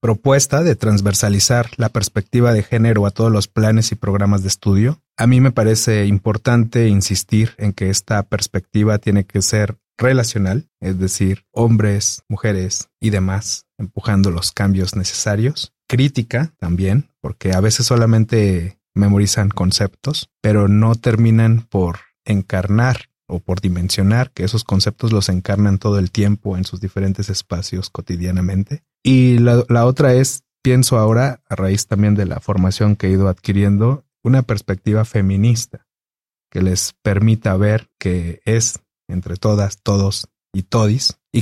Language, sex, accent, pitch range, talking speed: Spanish, male, Mexican, 95-115 Hz, 145 wpm